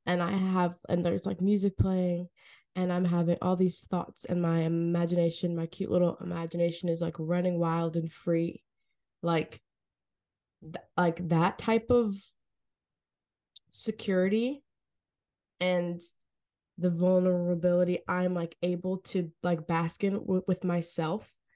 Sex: female